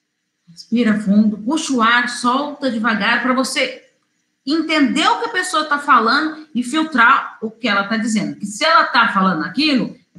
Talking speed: 175 wpm